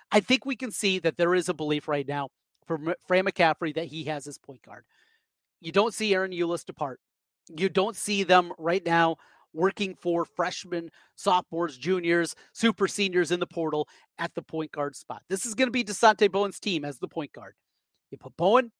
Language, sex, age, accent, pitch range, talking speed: English, male, 30-49, American, 170-210 Hz, 200 wpm